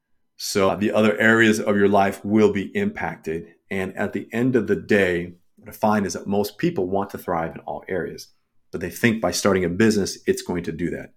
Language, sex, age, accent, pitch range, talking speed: English, male, 40-59, American, 105-140 Hz, 225 wpm